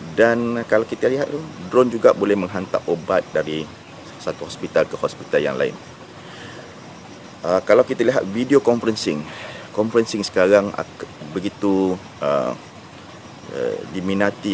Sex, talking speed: male, 120 wpm